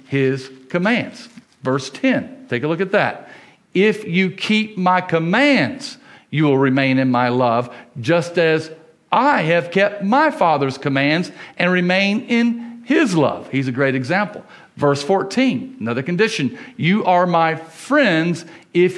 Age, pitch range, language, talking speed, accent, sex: 50-69, 130-170 Hz, English, 145 wpm, American, male